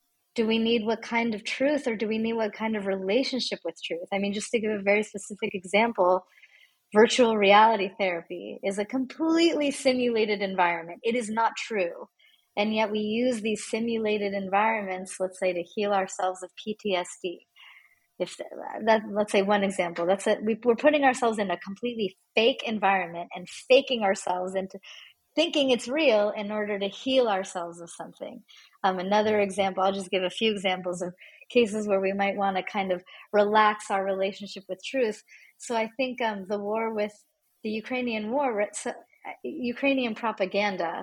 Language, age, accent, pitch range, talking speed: English, 30-49, American, 190-230 Hz, 175 wpm